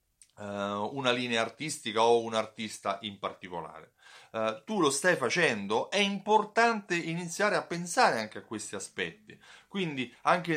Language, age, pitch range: Italian, 30-49, 110-165 Hz